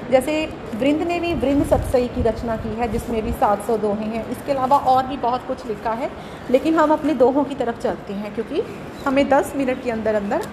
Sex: female